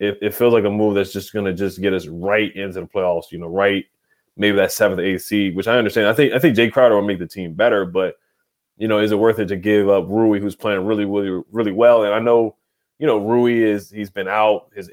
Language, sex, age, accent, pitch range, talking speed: English, male, 20-39, American, 95-115 Hz, 270 wpm